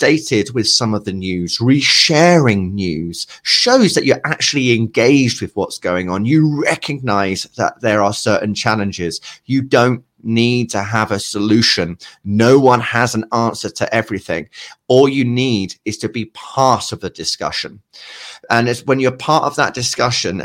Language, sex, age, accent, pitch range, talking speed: English, male, 30-49, British, 105-145 Hz, 160 wpm